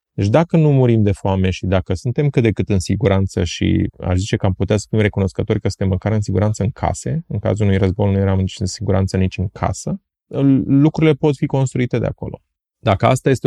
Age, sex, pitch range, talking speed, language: 30-49, male, 95-130 Hz, 225 wpm, Romanian